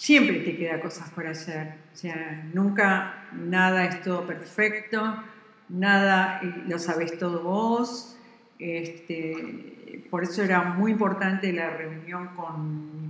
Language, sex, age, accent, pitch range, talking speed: Spanish, female, 70-89, Argentinian, 165-205 Hz, 130 wpm